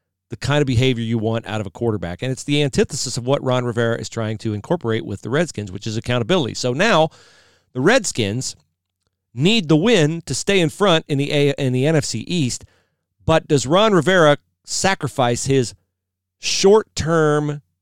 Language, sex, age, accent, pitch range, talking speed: English, male, 40-59, American, 105-140 Hz, 170 wpm